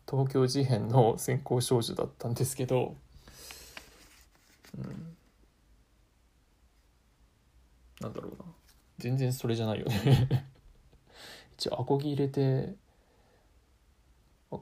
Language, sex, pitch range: Japanese, male, 115-150 Hz